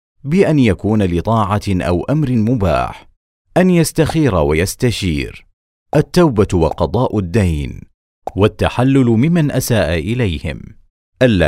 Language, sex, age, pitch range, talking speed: Arabic, male, 40-59, 85-125 Hz, 90 wpm